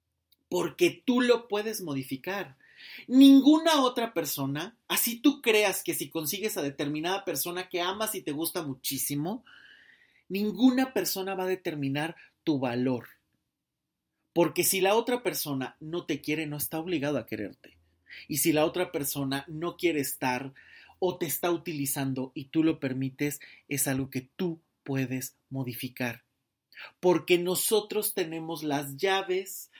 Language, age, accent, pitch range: Spanish, 30-49, Mexican, 155-235 Hz